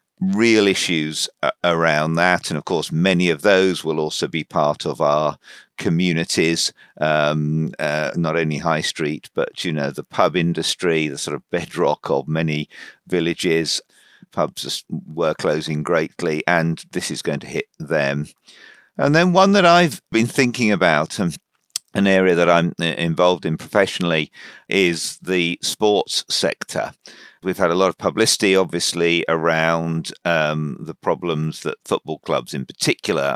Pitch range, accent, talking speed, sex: 80-100 Hz, British, 150 wpm, male